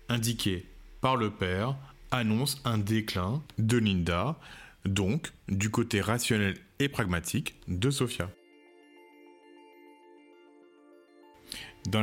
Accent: French